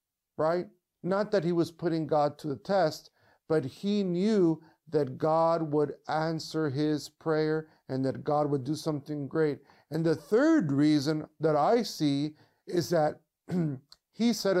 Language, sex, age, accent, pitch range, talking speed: English, male, 50-69, American, 145-175 Hz, 150 wpm